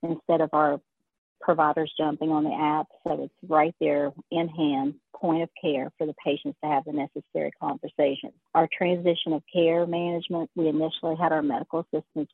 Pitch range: 150-175 Hz